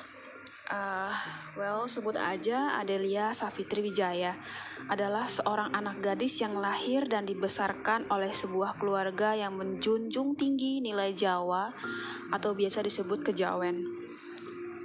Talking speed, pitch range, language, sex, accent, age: 110 wpm, 190-235 Hz, Indonesian, female, native, 20-39